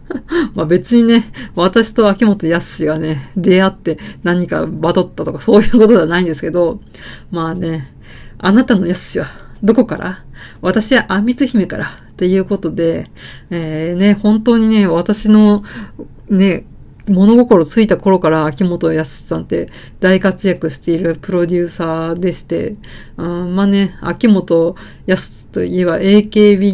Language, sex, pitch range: Japanese, female, 170-220 Hz